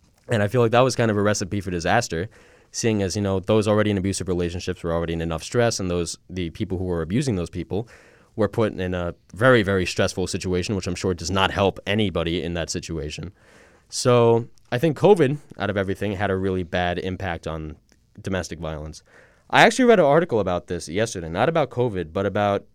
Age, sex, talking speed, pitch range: 20-39, male, 215 wpm, 90-120 Hz